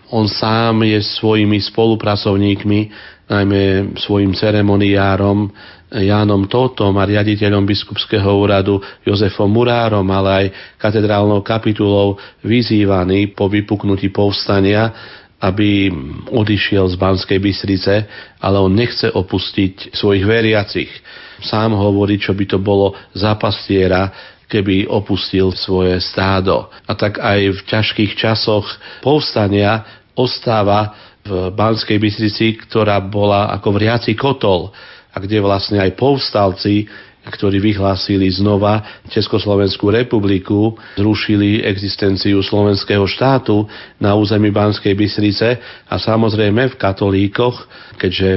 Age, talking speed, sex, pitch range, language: 40-59, 105 wpm, male, 95-105 Hz, Slovak